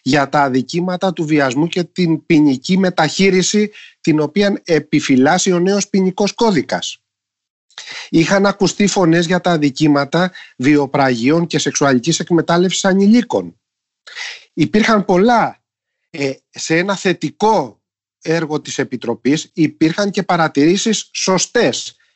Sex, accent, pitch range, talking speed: male, native, 145-205 Hz, 110 wpm